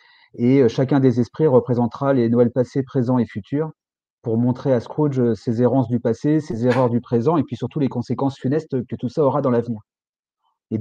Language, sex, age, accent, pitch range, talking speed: French, male, 30-49, French, 120-145 Hz, 200 wpm